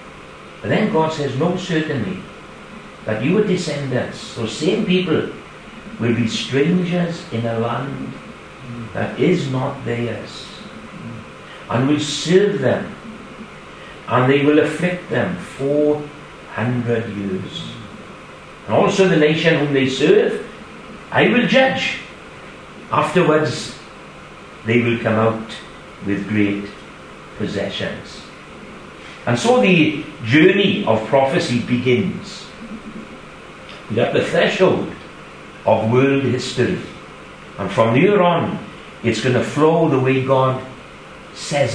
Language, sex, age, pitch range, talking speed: English, male, 60-79, 110-155 Hz, 110 wpm